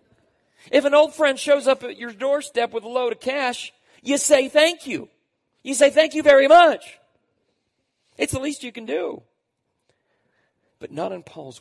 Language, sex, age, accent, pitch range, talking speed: English, male, 40-59, American, 135-225 Hz, 175 wpm